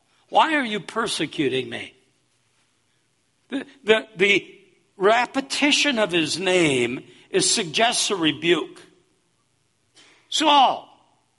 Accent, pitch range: American, 170-270 Hz